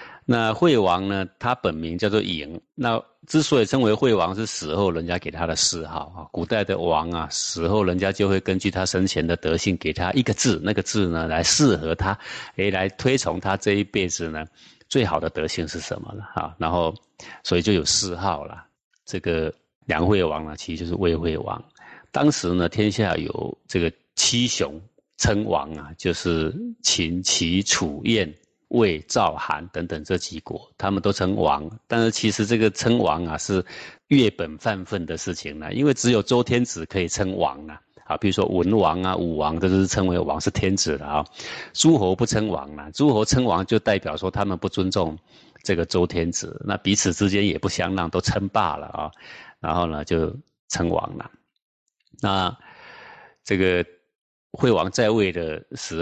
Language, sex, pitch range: Chinese, male, 85-105 Hz